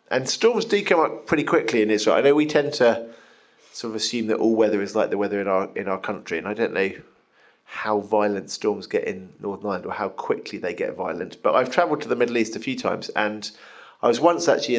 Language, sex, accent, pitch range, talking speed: English, male, British, 110-145 Hz, 250 wpm